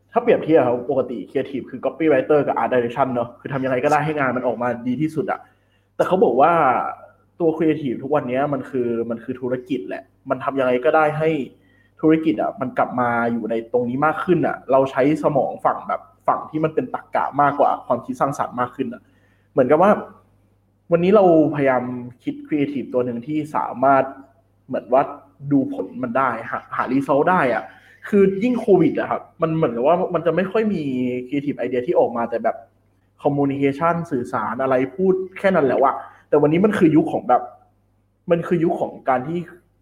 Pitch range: 125-160 Hz